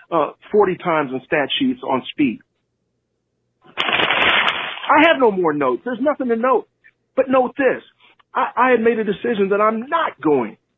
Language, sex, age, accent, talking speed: English, male, 40-59, American, 165 wpm